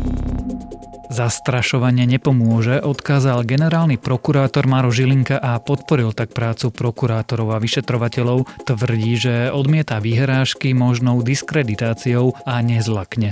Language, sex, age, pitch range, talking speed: Slovak, male, 30-49, 115-135 Hz, 100 wpm